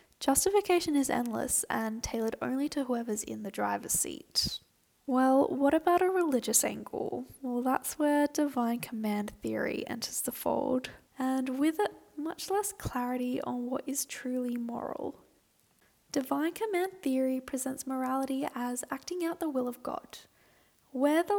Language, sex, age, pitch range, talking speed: English, female, 10-29, 235-285 Hz, 145 wpm